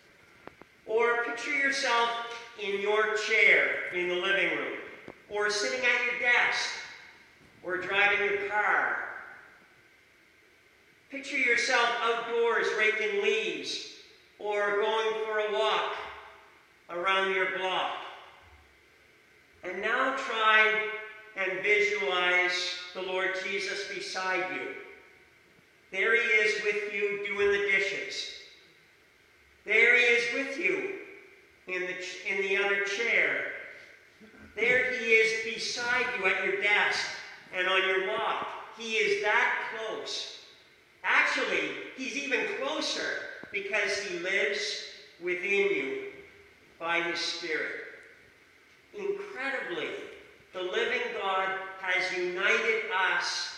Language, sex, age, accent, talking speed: English, male, 50-69, American, 105 wpm